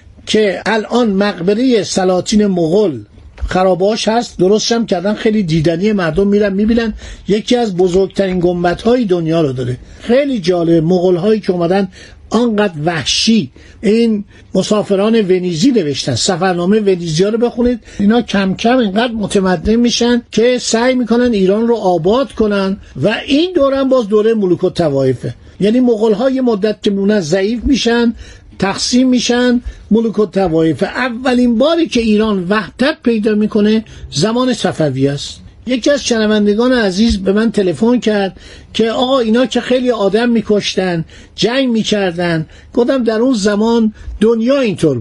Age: 50-69